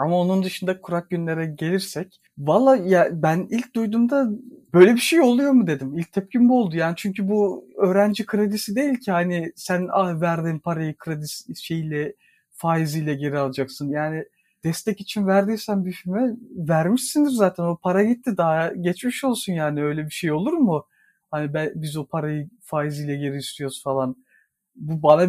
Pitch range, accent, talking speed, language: 165-210 Hz, native, 165 wpm, Turkish